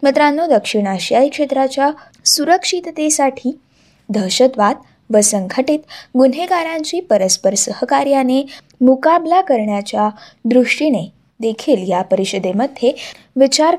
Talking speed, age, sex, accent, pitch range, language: 80 wpm, 20-39, female, native, 215-300 Hz, Marathi